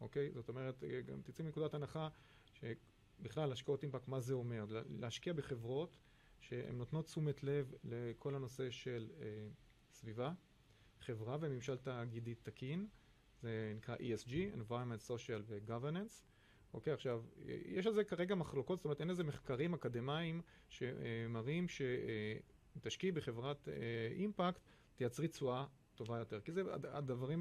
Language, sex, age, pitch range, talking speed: Hebrew, male, 30-49, 115-145 Hz, 140 wpm